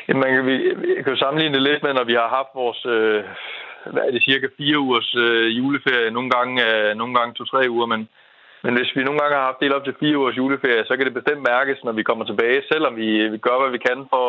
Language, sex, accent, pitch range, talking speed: Danish, male, native, 110-135 Hz, 250 wpm